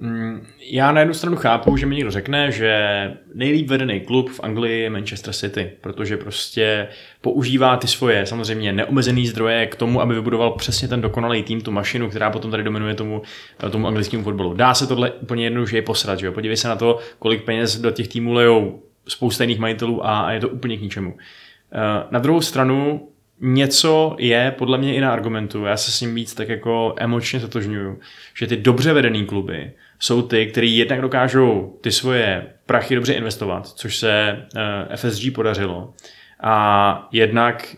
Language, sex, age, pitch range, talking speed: Czech, male, 20-39, 110-125 Hz, 175 wpm